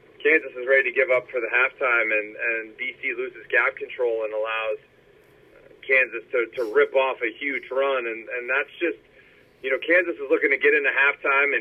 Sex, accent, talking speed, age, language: male, American, 195 wpm, 40-59, English